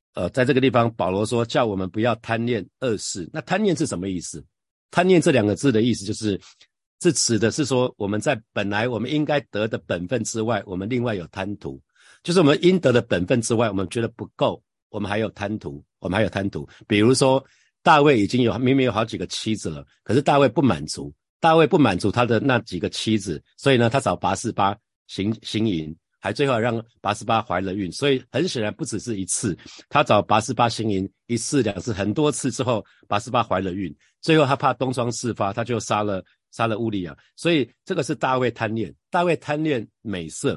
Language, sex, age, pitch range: Chinese, male, 50-69, 105-135 Hz